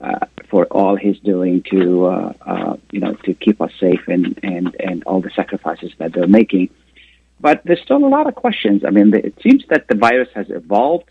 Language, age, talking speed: Arabic, 30-49, 215 wpm